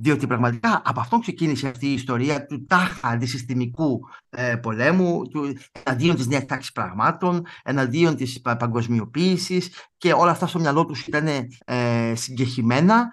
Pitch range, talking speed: 130-200 Hz, 140 wpm